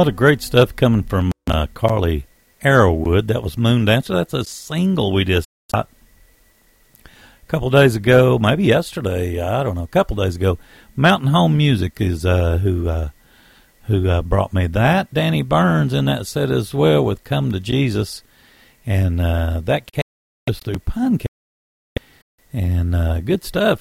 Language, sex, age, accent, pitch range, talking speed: English, male, 60-79, American, 95-140 Hz, 170 wpm